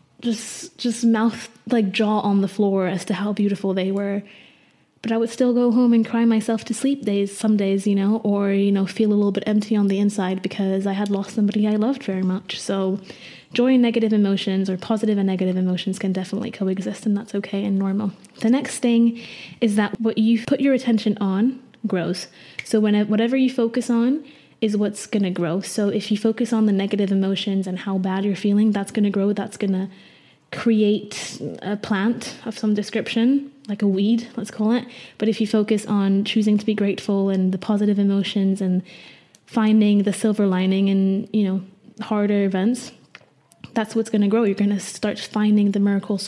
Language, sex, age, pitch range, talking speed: English, female, 20-39, 195-220 Hz, 205 wpm